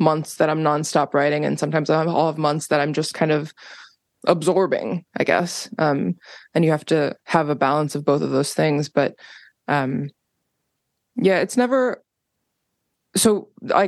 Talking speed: 175 wpm